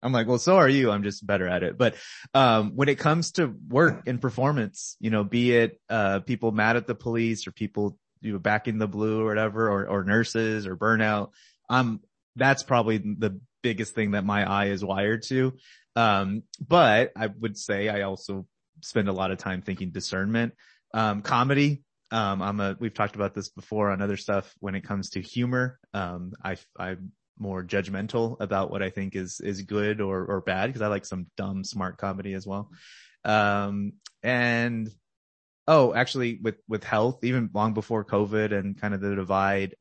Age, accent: 30-49, American